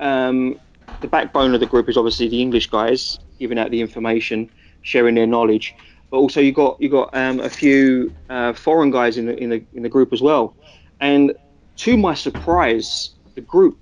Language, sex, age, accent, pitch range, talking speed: English, male, 30-49, British, 115-140 Hz, 195 wpm